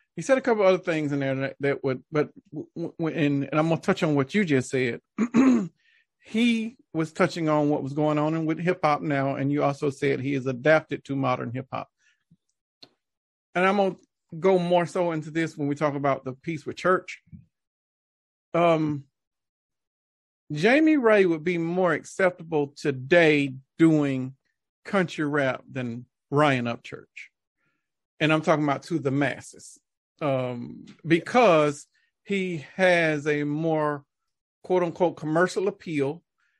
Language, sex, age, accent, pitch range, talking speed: English, male, 40-59, American, 140-175 Hz, 150 wpm